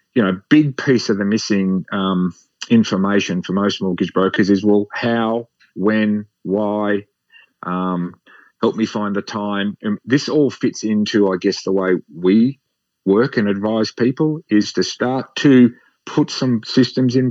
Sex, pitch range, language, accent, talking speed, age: male, 95-120 Hz, English, Australian, 165 wpm, 40-59